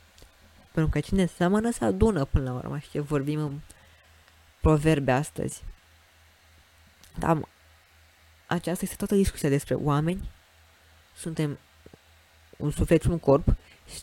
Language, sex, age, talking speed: Romanian, female, 20-39, 115 wpm